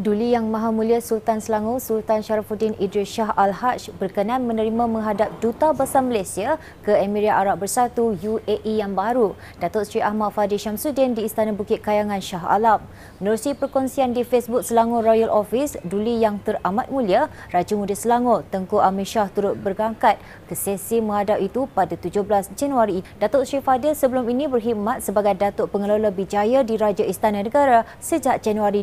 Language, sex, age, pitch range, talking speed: Malay, female, 20-39, 205-250 Hz, 160 wpm